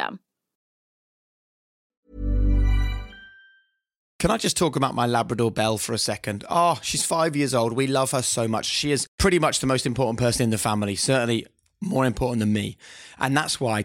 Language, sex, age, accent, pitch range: English, male, 30-49, British, 110-140 Hz